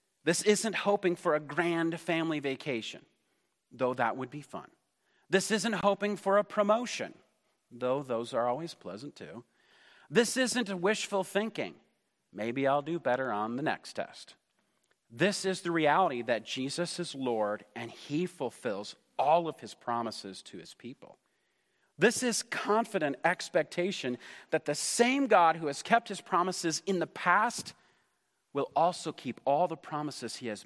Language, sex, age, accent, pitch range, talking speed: English, male, 40-59, American, 130-190 Hz, 155 wpm